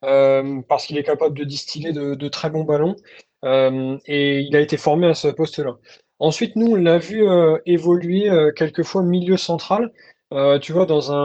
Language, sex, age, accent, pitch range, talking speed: French, male, 20-39, French, 150-180 Hz, 205 wpm